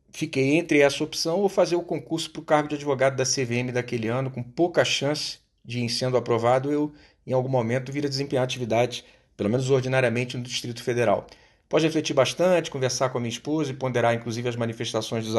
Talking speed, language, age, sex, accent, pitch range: 205 wpm, Portuguese, 40-59, male, Brazilian, 125-160 Hz